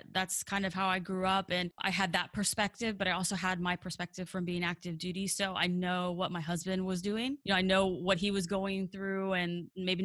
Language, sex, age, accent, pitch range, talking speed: English, female, 20-39, American, 175-195 Hz, 245 wpm